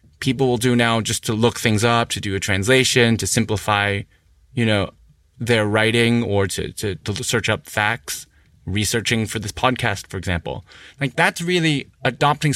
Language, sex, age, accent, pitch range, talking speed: English, male, 20-39, American, 110-140 Hz, 170 wpm